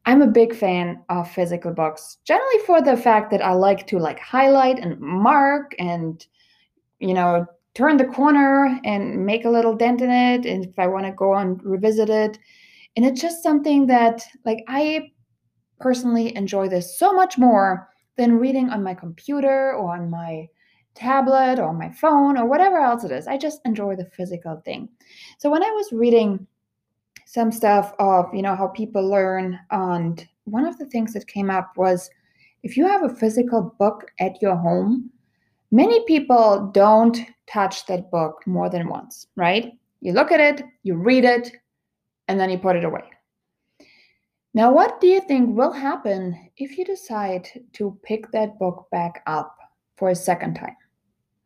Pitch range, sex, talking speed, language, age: 185-260 Hz, female, 175 wpm, English, 20-39